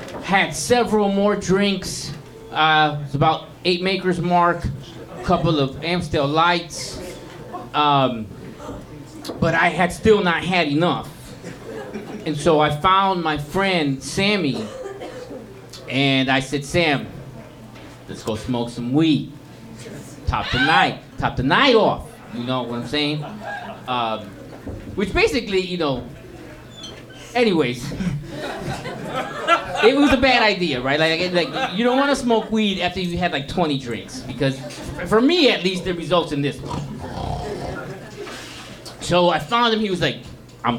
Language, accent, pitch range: English, American, 135-180 Hz